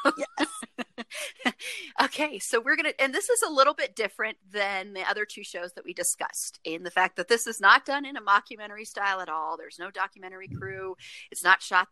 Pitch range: 180-250 Hz